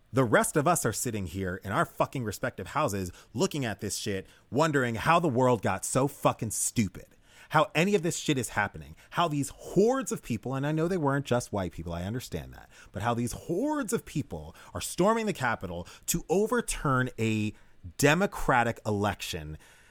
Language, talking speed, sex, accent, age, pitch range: English, 185 wpm, male, American, 30-49, 100-155 Hz